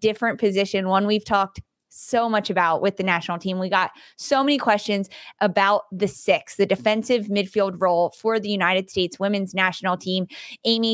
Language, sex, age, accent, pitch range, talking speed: English, female, 20-39, American, 190-230 Hz, 175 wpm